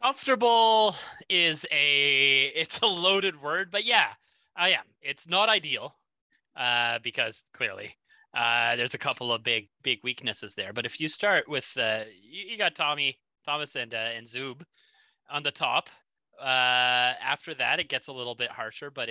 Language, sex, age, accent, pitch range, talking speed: English, male, 20-39, American, 120-180 Hz, 170 wpm